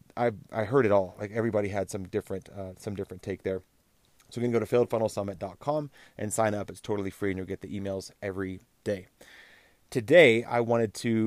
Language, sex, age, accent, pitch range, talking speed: English, male, 30-49, American, 100-120 Hz, 200 wpm